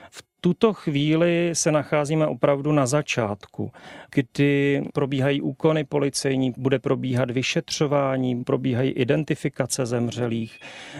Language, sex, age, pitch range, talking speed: Czech, male, 40-59, 125-145 Hz, 95 wpm